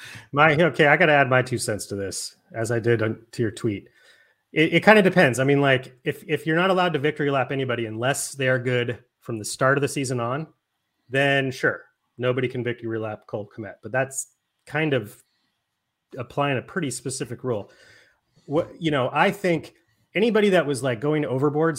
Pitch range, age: 120-150 Hz, 30-49